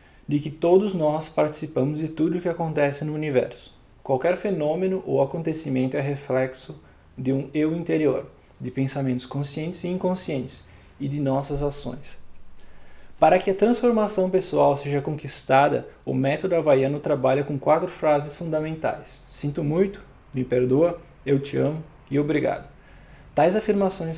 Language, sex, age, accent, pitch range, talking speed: Portuguese, male, 20-39, Brazilian, 135-165 Hz, 140 wpm